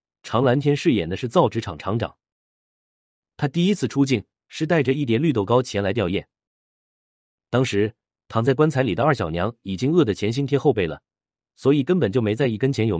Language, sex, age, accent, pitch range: Chinese, male, 30-49, native, 100-140 Hz